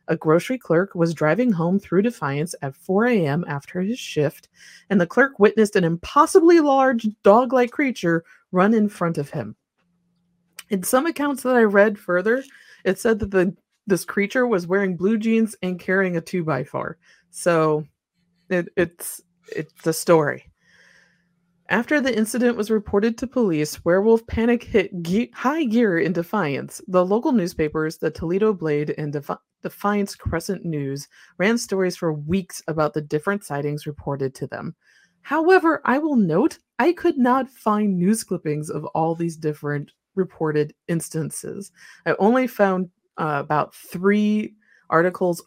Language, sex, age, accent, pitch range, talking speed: English, female, 30-49, American, 165-215 Hz, 150 wpm